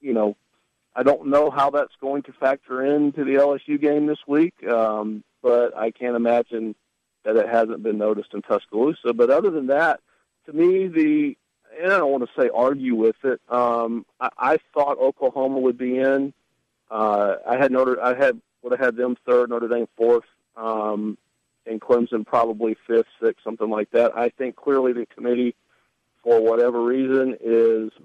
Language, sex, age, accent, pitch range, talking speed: English, male, 50-69, American, 115-140 Hz, 180 wpm